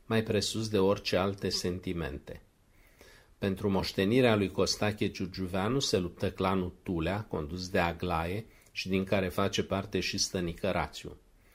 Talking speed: 135 wpm